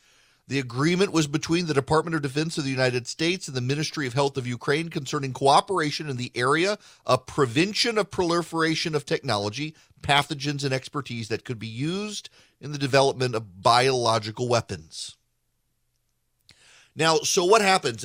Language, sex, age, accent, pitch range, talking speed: English, male, 40-59, American, 120-155 Hz, 155 wpm